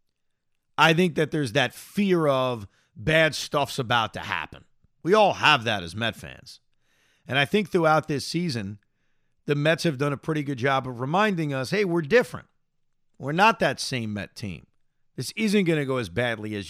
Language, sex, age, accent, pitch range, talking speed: English, male, 40-59, American, 120-170 Hz, 190 wpm